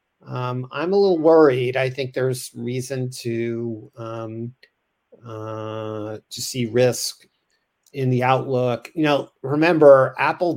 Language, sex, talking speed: English, male, 125 wpm